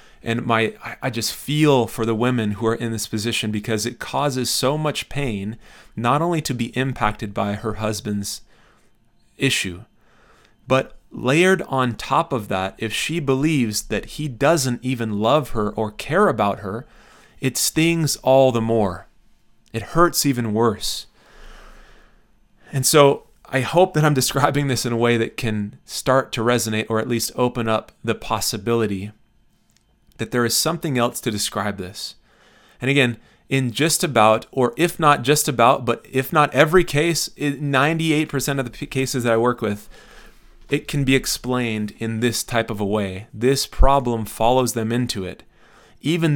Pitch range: 110-140 Hz